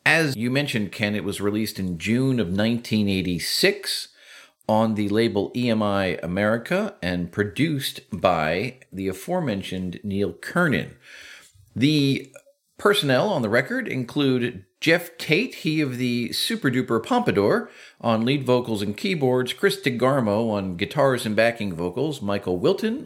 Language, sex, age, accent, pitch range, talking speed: English, male, 50-69, American, 105-150 Hz, 135 wpm